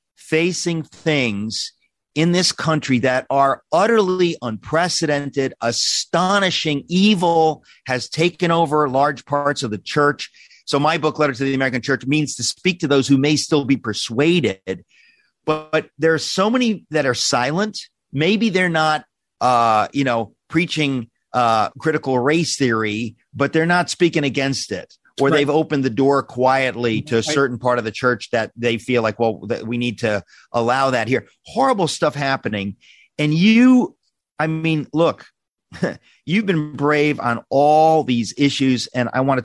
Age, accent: 40-59, American